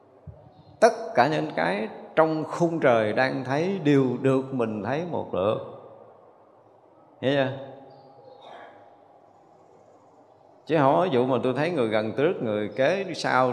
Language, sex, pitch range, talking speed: Vietnamese, male, 110-135 Hz, 120 wpm